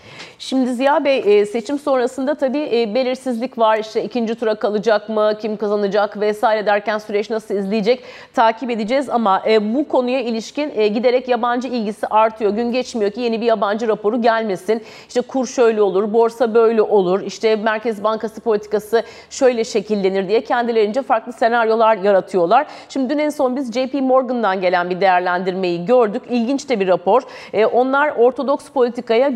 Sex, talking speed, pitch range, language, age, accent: female, 150 wpm, 215-260 Hz, Turkish, 40-59, native